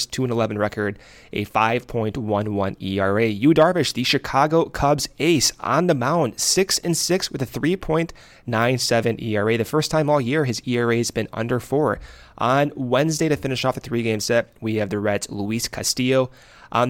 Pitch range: 110-155 Hz